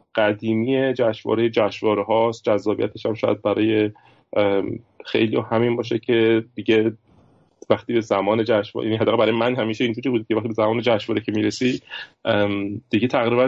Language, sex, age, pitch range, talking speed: Persian, male, 30-49, 100-120 Hz, 145 wpm